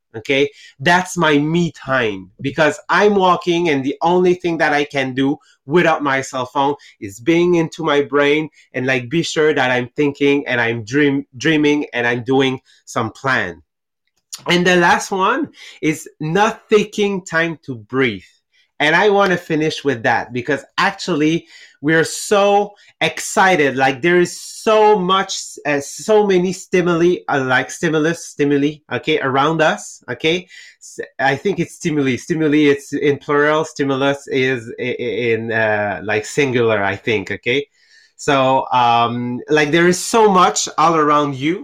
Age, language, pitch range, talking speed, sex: 30-49, English, 135-175 Hz, 155 wpm, male